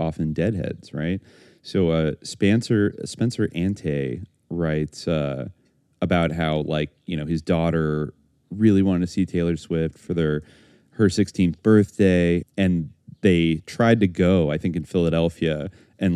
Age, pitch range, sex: 30-49, 85-110 Hz, male